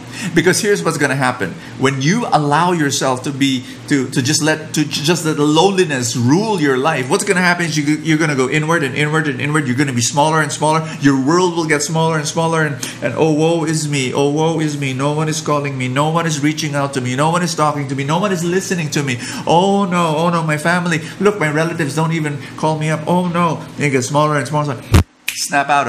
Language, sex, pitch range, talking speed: English, male, 130-160 Hz, 245 wpm